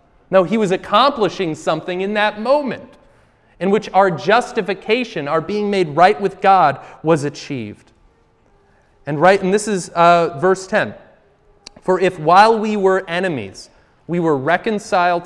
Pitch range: 165-205 Hz